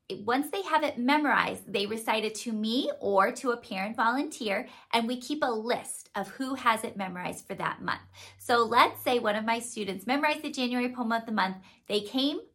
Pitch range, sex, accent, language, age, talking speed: 205-265 Hz, female, American, English, 30-49, 210 wpm